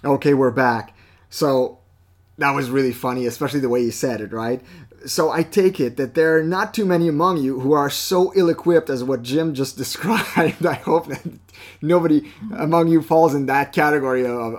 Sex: male